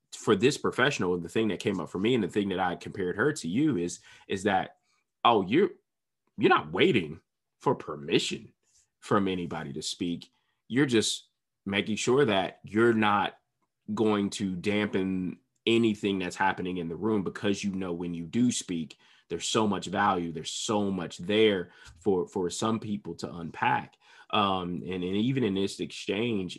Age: 20-39